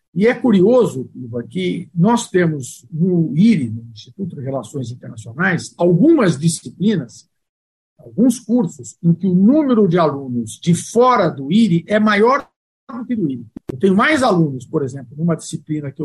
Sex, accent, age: male, Brazilian, 50-69